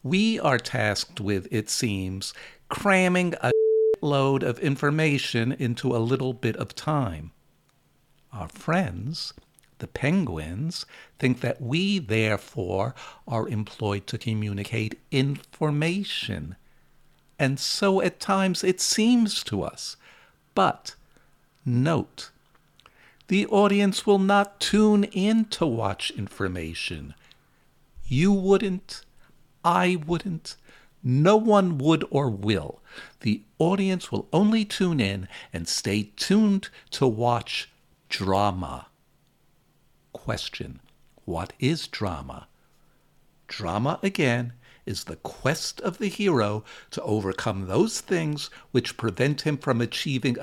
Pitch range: 110-180 Hz